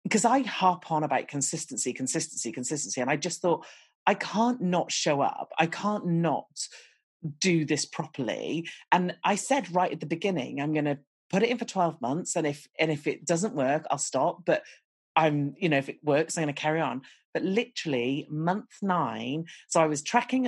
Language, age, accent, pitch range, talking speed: English, 40-59, British, 155-235 Hz, 200 wpm